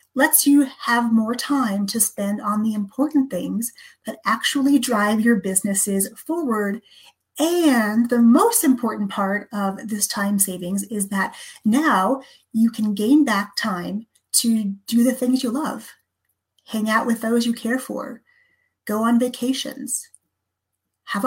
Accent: American